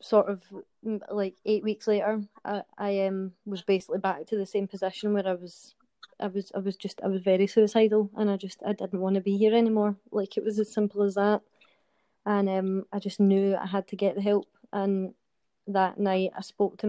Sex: female